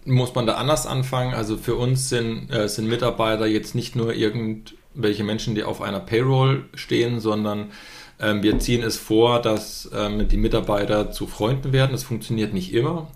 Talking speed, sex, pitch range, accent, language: 180 wpm, male, 105-125 Hz, German, German